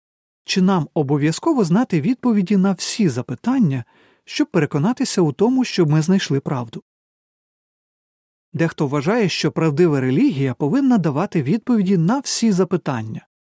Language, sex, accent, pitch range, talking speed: Ukrainian, male, native, 145-205 Hz, 120 wpm